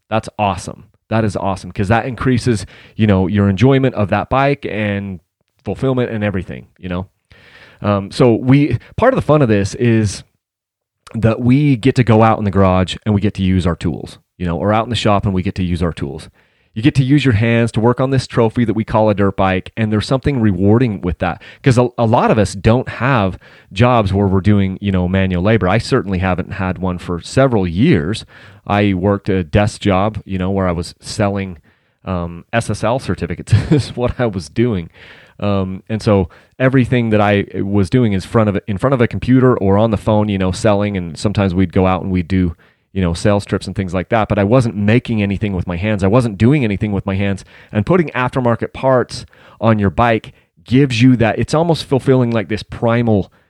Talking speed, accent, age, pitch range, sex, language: 220 wpm, American, 30-49, 95-120 Hz, male, English